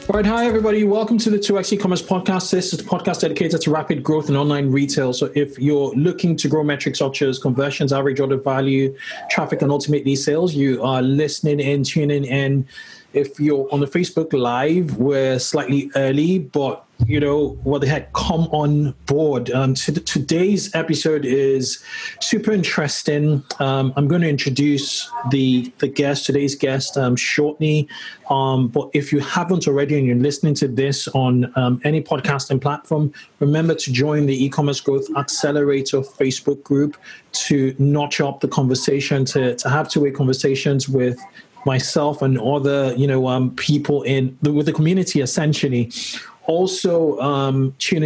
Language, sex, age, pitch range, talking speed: English, male, 20-39, 135-155 Hz, 175 wpm